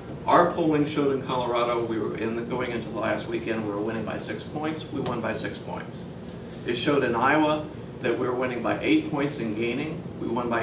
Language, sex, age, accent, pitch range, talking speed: English, male, 50-69, American, 120-155 Hz, 220 wpm